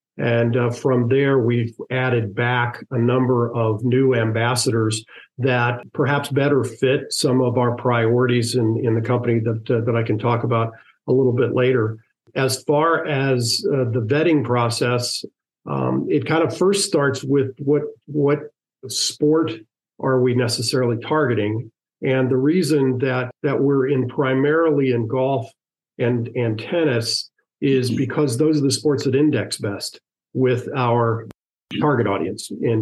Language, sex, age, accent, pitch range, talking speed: English, male, 50-69, American, 115-135 Hz, 150 wpm